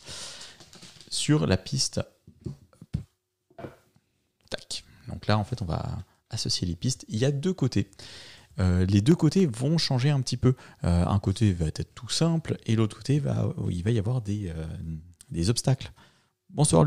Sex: male